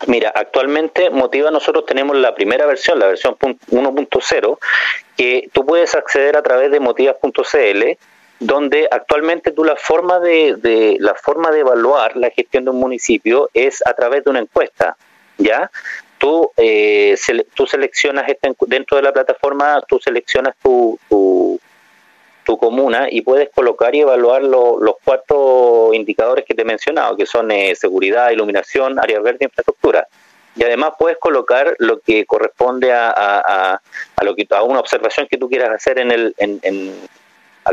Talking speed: 165 wpm